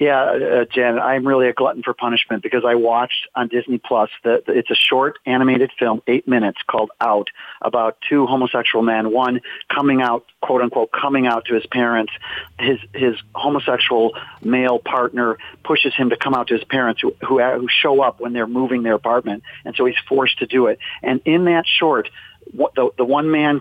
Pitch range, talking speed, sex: 125-155 Hz, 200 wpm, male